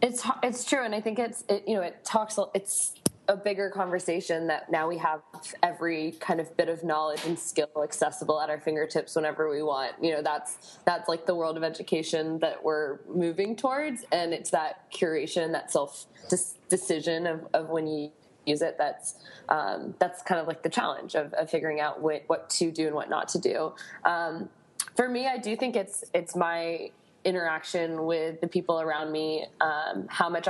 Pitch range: 155-180 Hz